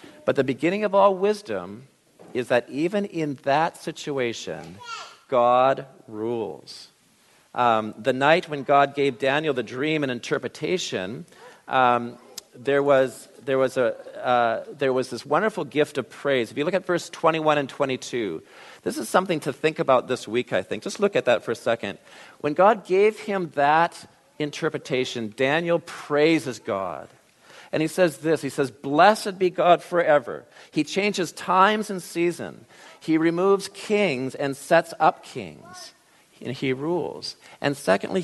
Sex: male